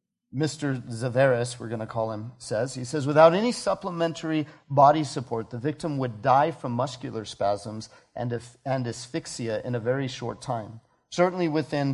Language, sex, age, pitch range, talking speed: English, male, 40-59, 130-165 Hz, 155 wpm